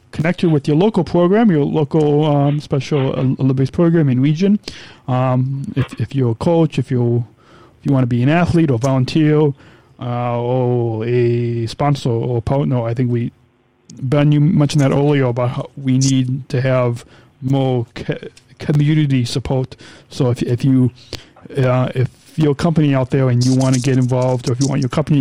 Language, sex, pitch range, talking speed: English, male, 125-145 Hz, 180 wpm